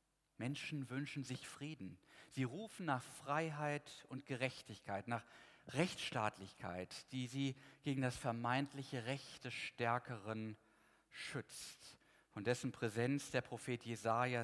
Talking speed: 110 wpm